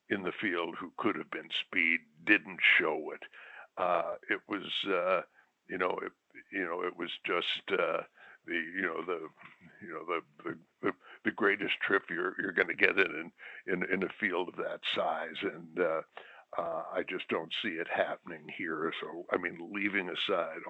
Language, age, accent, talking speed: English, 60-79, American, 180 wpm